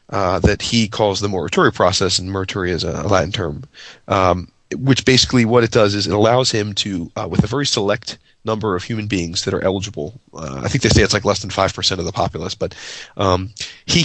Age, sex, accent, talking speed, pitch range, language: 30-49, male, American, 225 wpm, 95-115 Hz, English